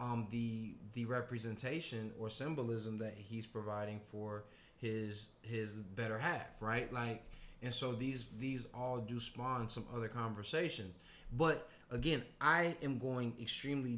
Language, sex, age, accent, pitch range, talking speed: English, male, 20-39, American, 110-125 Hz, 135 wpm